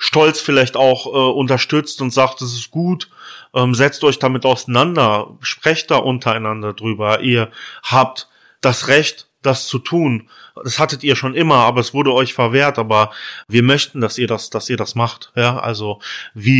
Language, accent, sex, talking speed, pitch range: German, German, male, 175 wpm, 110-130 Hz